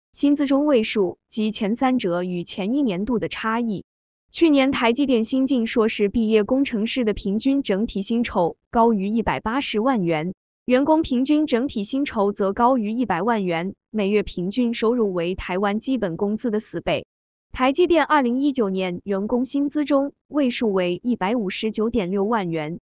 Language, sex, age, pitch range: Chinese, female, 20-39, 200-255 Hz